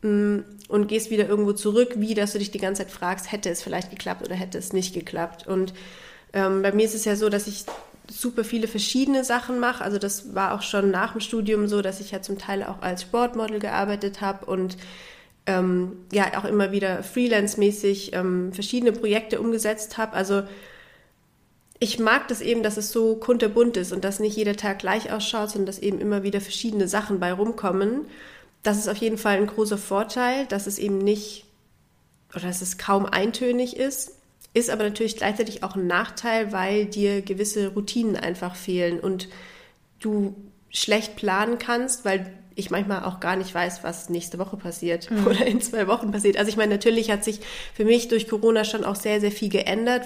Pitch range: 195-220 Hz